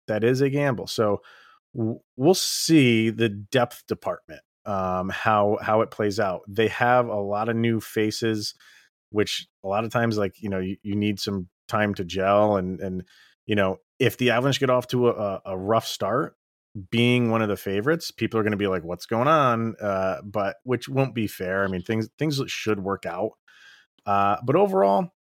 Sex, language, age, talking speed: male, English, 30-49, 195 wpm